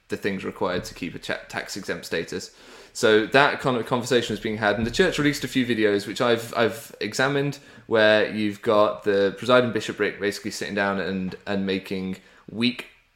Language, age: English, 20-39